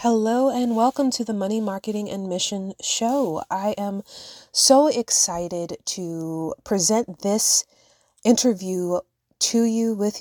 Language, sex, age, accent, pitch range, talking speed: English, female, 20-39, American, 165-205 Hz, 125 wpm